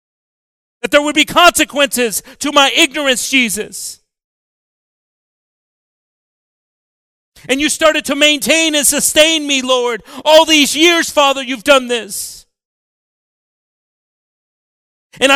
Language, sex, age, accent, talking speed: English, male, 40-59, American, 100 wpm